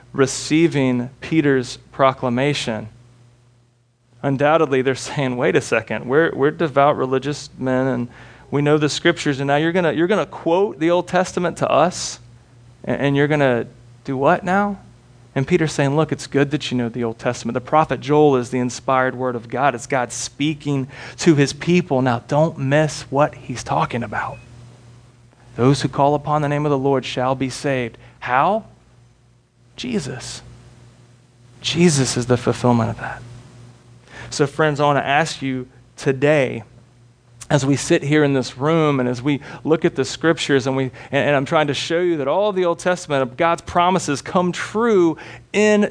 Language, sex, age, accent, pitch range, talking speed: English, male, 30-49, American, 125-155 Hz, 175 wpm